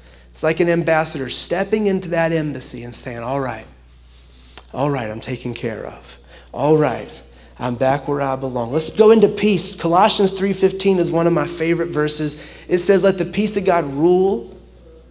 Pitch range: 155-195 Hz